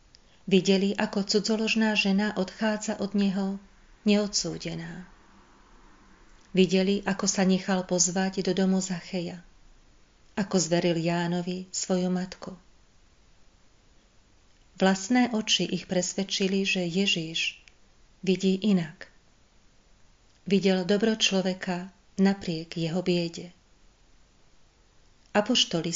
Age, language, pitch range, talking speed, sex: 40-59, Slovak, 175-195 Hz, 85 wpm, female